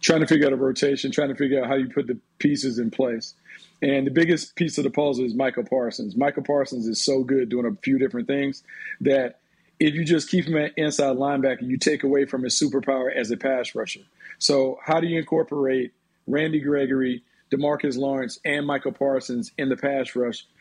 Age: 40-59